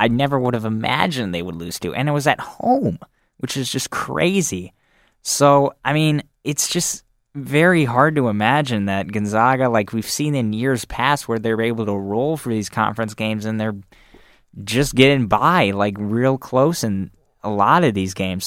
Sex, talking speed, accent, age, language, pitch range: male, 190 wpm, American, 10-29, English, 105-130 Hz